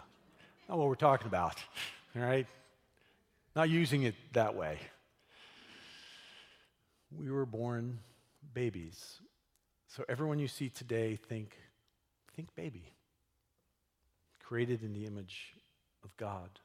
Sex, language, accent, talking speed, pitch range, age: male, English, American, 110 wpm, 90-120 Hz, 50-69